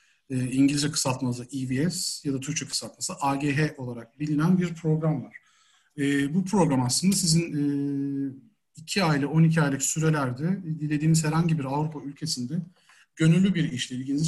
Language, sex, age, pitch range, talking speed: Turkish, male, 40-59, 135-160 Hz, 145 wpm